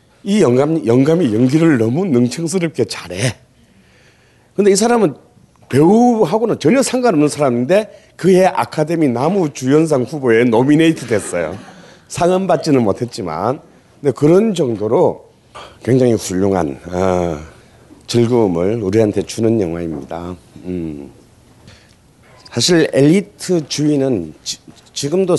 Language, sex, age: Korean, male, 40-59